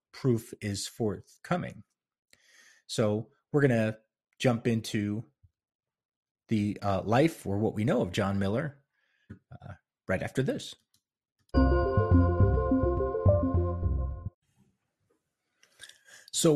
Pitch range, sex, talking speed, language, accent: 100-130 Hz, male, 85 wpm, English, American